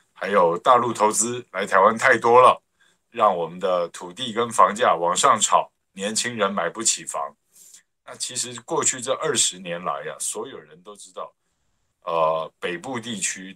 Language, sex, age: Chinese, male, 50-69